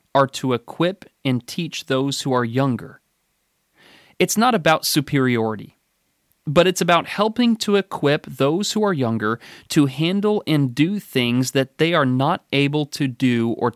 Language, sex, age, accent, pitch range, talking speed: English, male, 30-49, American, 120-160 Hz, 155 wpm